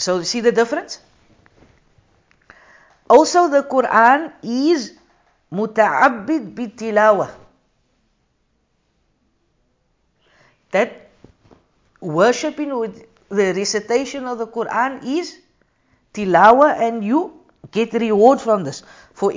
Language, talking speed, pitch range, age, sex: English, 85 wpm, 200-285 Hz, 50-69, female